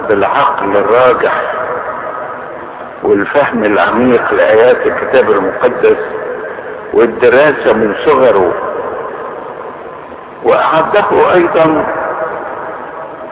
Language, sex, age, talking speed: Arabic, male, 60-79, 55 wpm